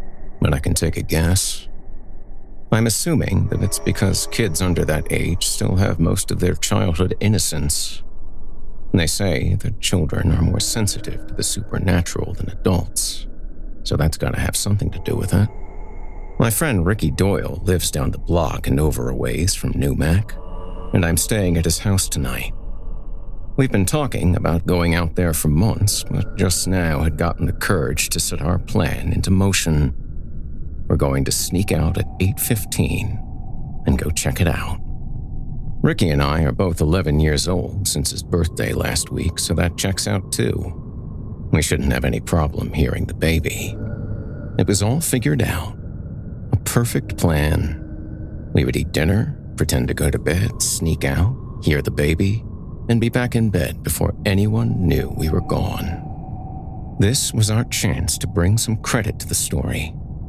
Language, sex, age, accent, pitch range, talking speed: English, male, 50-69, American, 80-105 Hz, 170 wpm